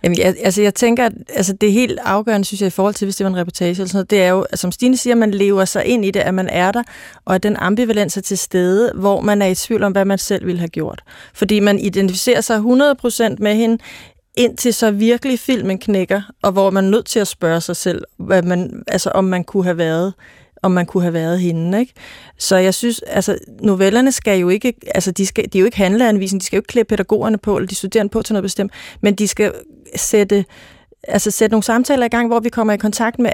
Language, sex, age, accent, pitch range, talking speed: Danish, female, 30-49, native, 195-230 Hz, 255 wpm